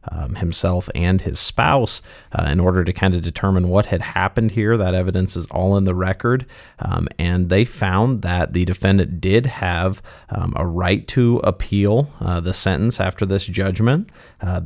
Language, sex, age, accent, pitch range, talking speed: English, male, 30-49, American, 90-105 Hz, 180 wpm